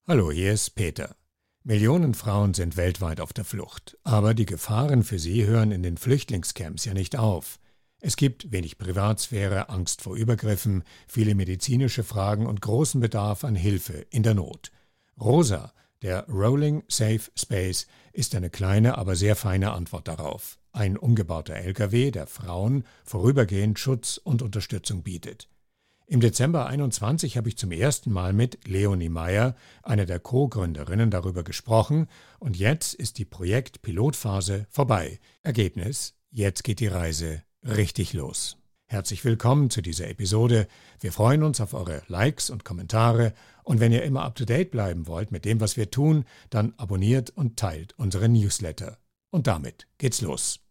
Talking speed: 150 wpm